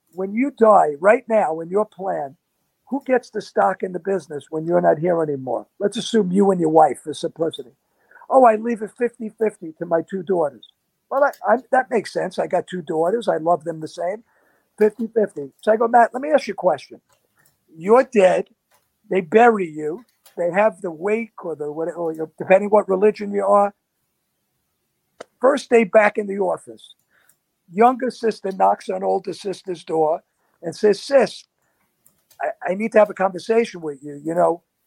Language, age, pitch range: English, 50-69, 175-220 Hz